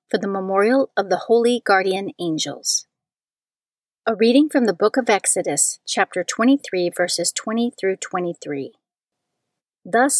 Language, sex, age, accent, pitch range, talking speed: English, female, 40-59, American, 190-245 Hz, 130 wpm